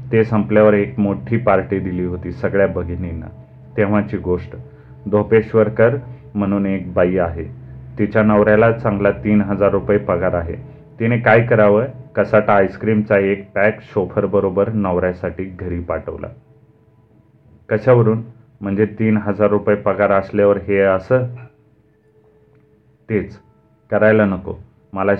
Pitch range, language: 95-110 Hz, Marathi